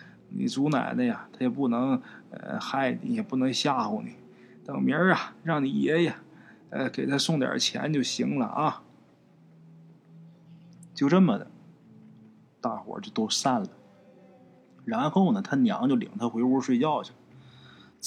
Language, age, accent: Chinese, 20-39, native